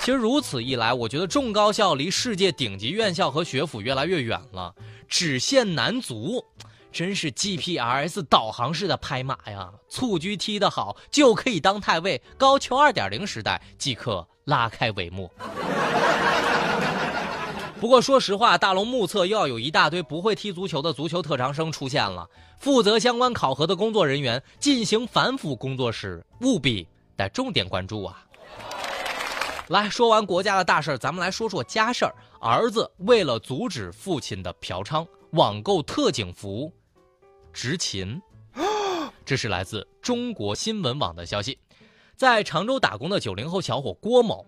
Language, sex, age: Chinese, male, 20-39